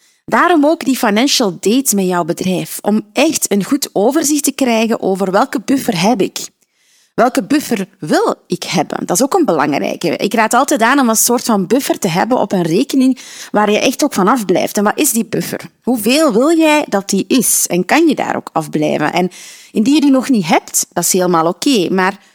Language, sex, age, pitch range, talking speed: Dutch, female, 30-49, 190-260 Hz, 210 wpm